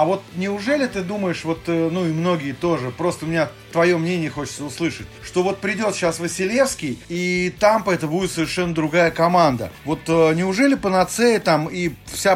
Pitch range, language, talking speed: 155-190 Hz, English, 170 wpm